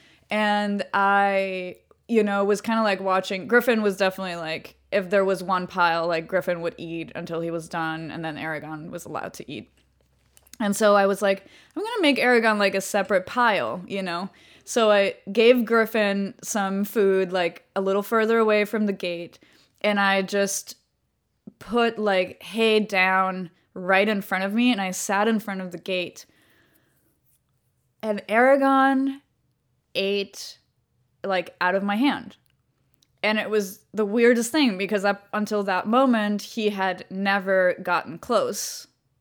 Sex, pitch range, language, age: female, 180-215 Hz, English, 20-39